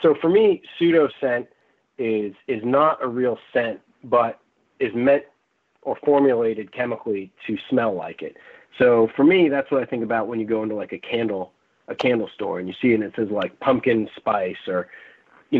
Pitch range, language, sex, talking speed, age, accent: 110-135 Hz, English, male, 195 wpm, 30-49, American